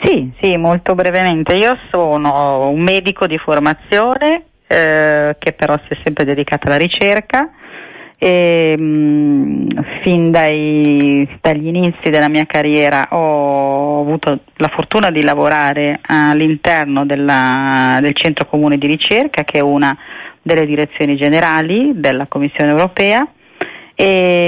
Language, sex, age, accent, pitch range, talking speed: Italian, female, 40-59, native, 145-170 Hz, 125 wpm